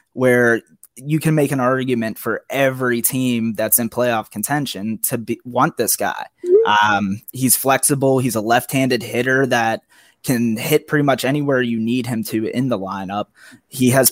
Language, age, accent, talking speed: English, 20-39, American, 165 wpm